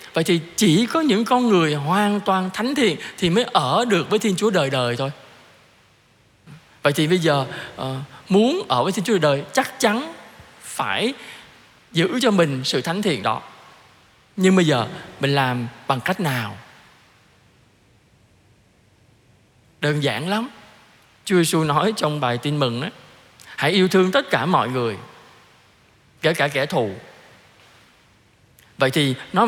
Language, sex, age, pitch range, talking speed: Vietnamese, male, 20-39, 135-225 Hz, 155 wpm